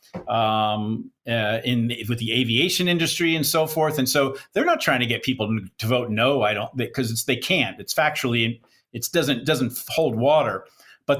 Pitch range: 115-145 Hz